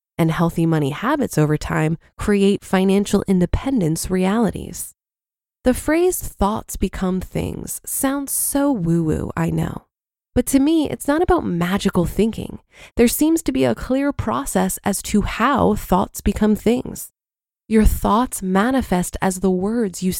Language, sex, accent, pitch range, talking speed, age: English, female, American, 180-250 Hz, 145 wpm, 20-39